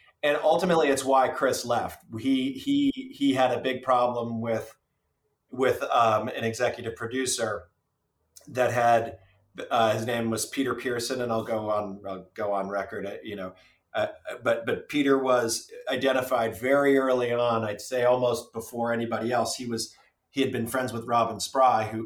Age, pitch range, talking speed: 40-59, 115-145 Hz, 170 wpm